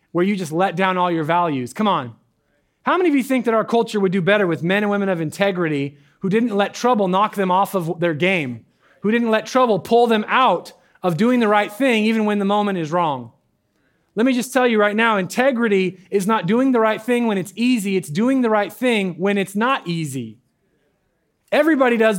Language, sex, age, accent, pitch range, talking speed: English, male, 30-49, American, 180-225 Hz, 225 wpm